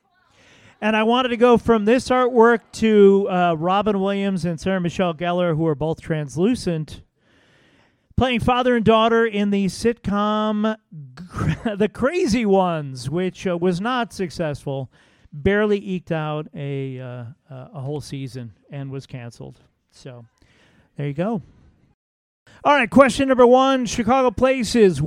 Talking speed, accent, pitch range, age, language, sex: 140 wpm, American, 155-225 Hz, 40-59, English, male